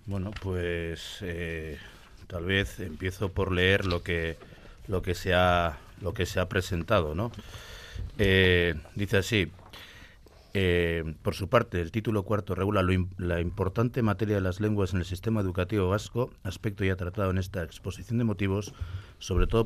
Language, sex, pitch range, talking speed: Spanish, male, 85-105 Hz, 160 wpm